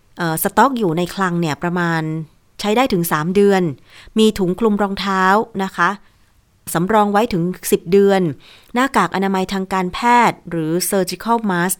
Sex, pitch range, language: female, 170-205 Hz, Thai